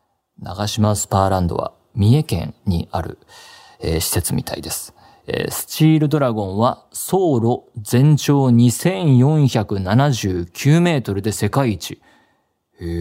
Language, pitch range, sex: Japanese, 100-125 Hz, male